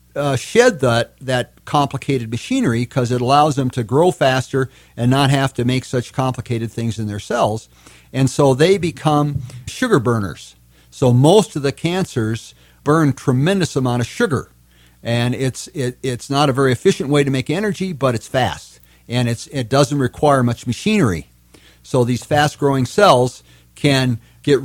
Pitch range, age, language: 115-145 Hz, 50-69, English